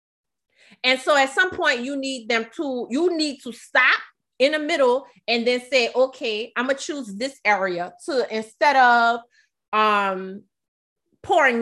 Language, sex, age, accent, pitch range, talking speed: English, female, 30-49, American, 215-270 Hz, 160 wpm